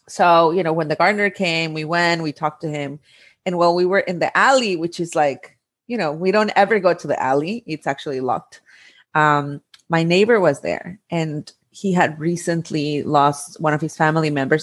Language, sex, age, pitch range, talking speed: English, female, 30-49, 150-195 Hz, 205 wpm